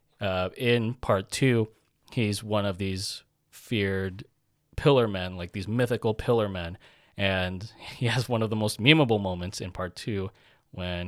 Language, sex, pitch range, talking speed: English, male, 95-120 Hz, 155 wpm